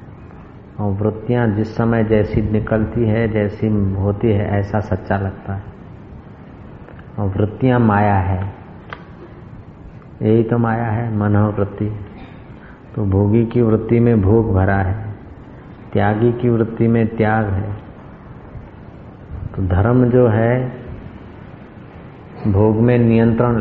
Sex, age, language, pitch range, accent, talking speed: male, 50-69, Hindi, 100-120 Hz, native, 110 wpm